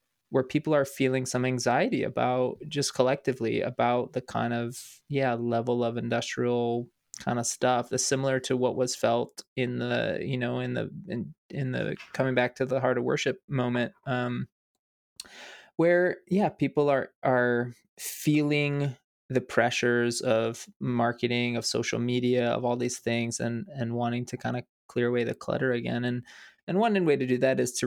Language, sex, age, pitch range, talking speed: English, male, 20-39, 120-130 Hz, 175 wpm